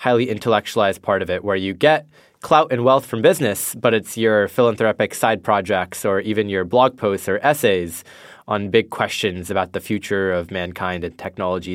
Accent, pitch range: American, 95-120 Hz